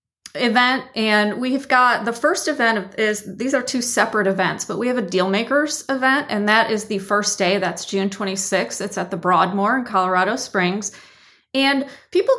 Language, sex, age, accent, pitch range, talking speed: English, female, 30-49, American, 185-225 Hz, 180 wpm